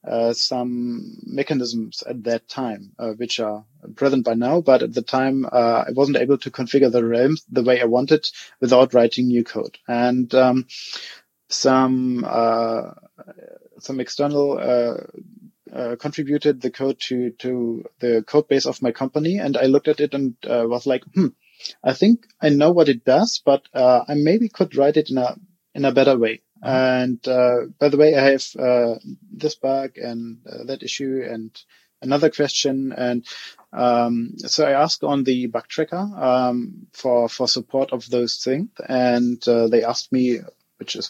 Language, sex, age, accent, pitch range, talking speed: English, male, 30-49, German, 120-145 Hz, 175 wpm